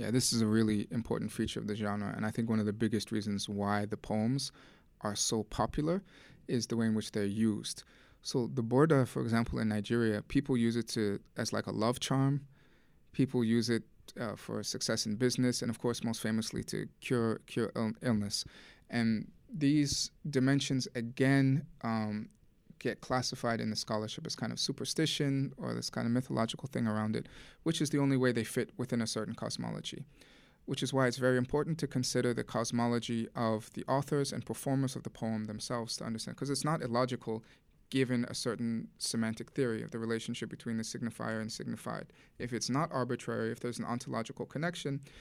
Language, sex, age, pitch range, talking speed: English, male, 20-39, 110-130 Hz, 190 wpm